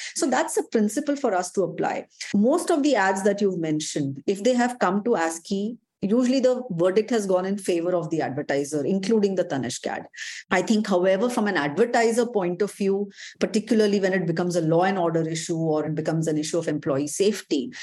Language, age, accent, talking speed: English, 30-49, Indian, 205 wpm